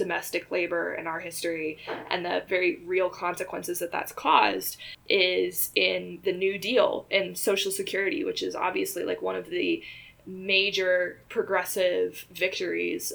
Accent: American